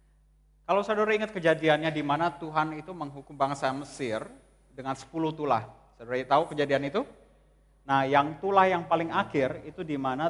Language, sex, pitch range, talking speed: Malay, male, 135-175 Hz, 155 wpm